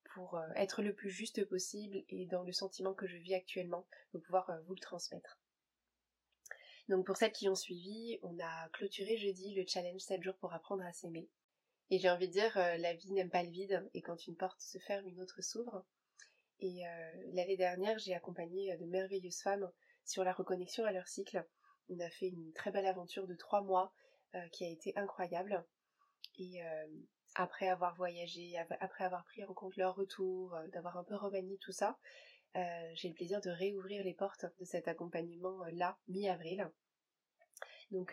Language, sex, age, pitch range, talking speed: French, female, 20-39, 175-195 Hz, 190 wpm